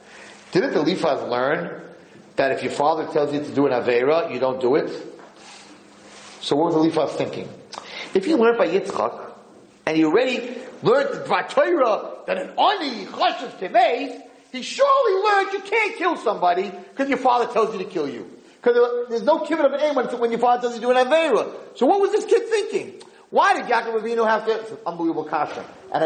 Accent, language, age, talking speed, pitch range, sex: American, English, 40-59, 195 wpm, 220-325 Hz, male